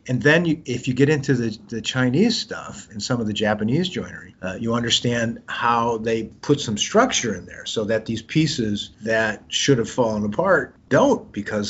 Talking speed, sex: 195 wpm, male